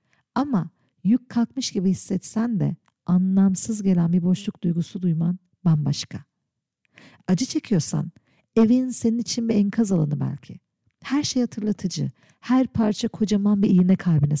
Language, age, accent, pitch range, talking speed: Turkish, 50-69, native, 175-235 Hz, 130 wpm